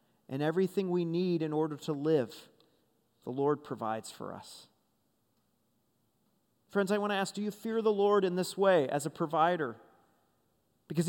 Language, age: English, 40-59